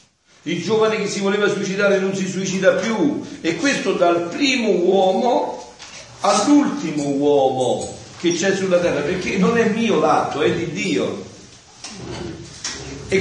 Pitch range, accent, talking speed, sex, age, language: 145-205 Hz, native, 135 wpm, male, 50-69, Italian